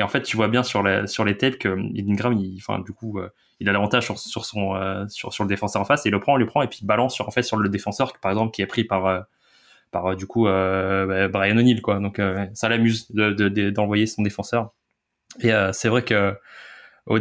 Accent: French